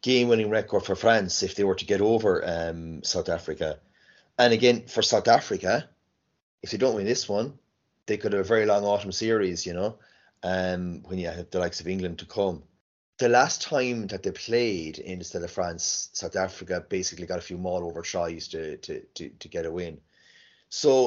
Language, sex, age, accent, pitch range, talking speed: English, male, 30-49, Irish, 95-125 Hz, 205 wpm